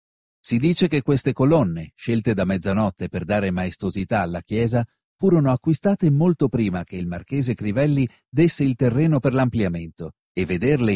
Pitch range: 105-155 Hz